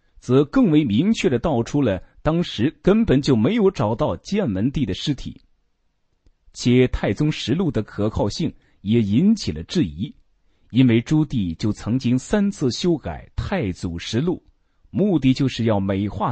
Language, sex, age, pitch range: Chinese, male, 30-49, 100-155 Hz